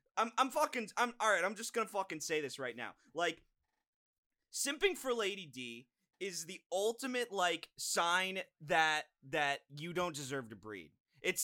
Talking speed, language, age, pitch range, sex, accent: 170 wpm, English, 20-39, 130-185 Hz, male, American